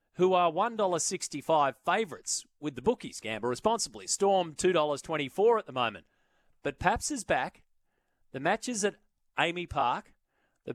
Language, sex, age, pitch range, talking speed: English, male, 30-49, 130-170 Hz, 140 wpm